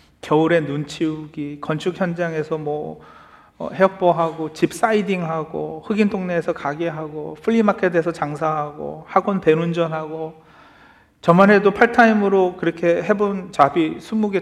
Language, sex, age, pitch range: Korean, male, 40-59, 150-215 Hz